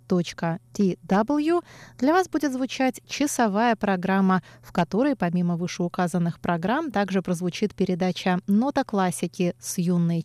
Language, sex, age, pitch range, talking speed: Russian, female, 20-39, 175-235 Hz, 105 wpm